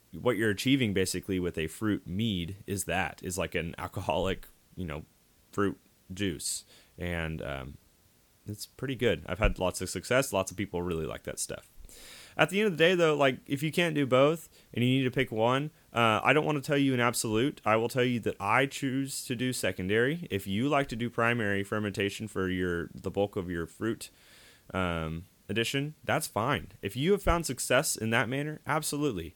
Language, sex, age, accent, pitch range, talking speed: English, male, 30-49, American, 95-130 Hz, 205 wpm